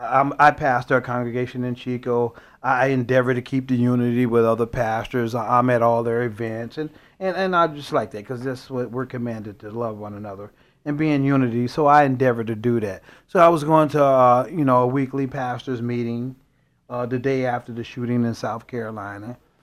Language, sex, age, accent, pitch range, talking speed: English, male, 40-59, American, 120-145 Hz, 200 wpm